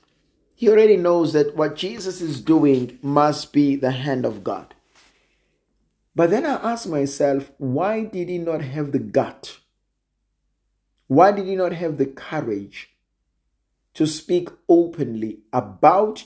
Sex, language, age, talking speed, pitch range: male, English, 50-69, 135 wpm, 125-170 Hz